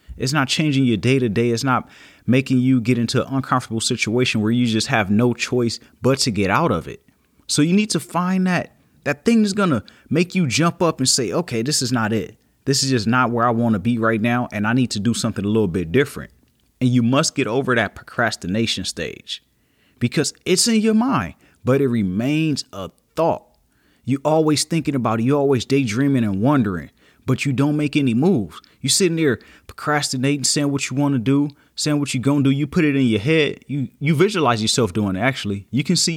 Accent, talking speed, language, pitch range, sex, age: American, 230 wpm, English, 115-140 Hz, male, 30-49